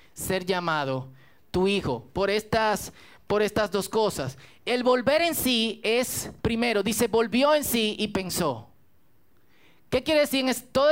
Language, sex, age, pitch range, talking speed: Spanish, male, 30-49, 165-235 Hz, 150 wpm